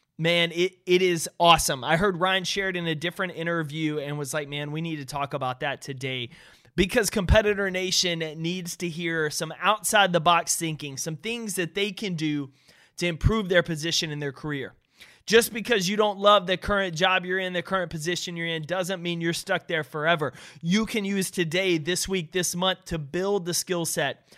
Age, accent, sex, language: 30-49, American, male, English